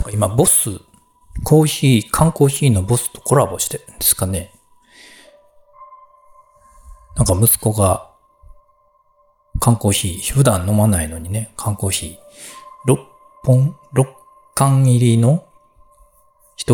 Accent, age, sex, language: native, 40-59, male, Japanese